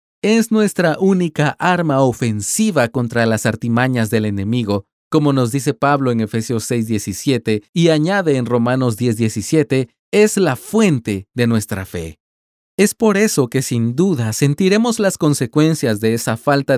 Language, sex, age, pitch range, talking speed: Spanish, male, 40-59, 110-160 Hz, 145 wpm